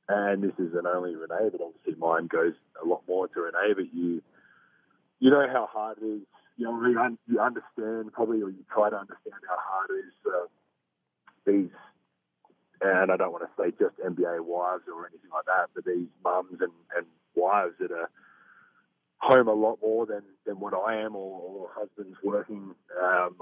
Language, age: English, 30-49